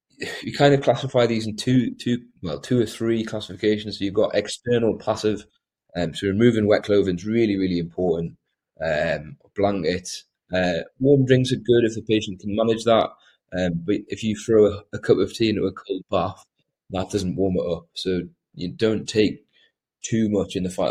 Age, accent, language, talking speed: 20-39, British, English, 200 wpm